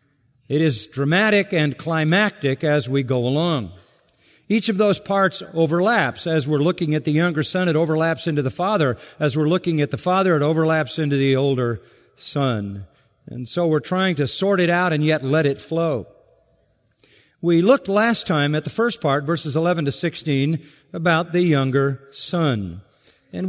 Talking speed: 175 wpm